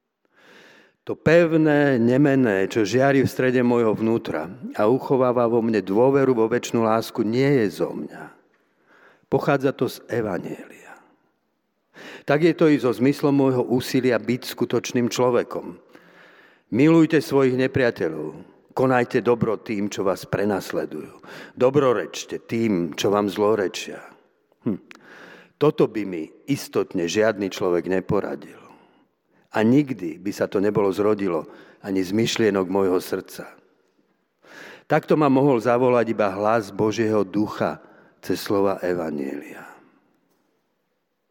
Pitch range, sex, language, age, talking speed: 105-135 Hz, male, Slovak, 50-69, 115 wpm